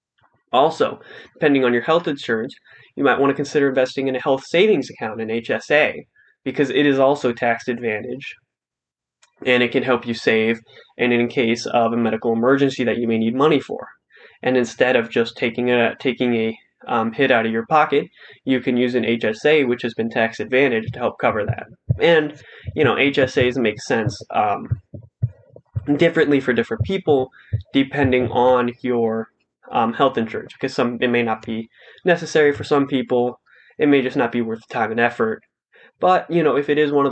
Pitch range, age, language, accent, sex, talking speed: 115-140 Hz, 20-39, English, American, male, 190 wpm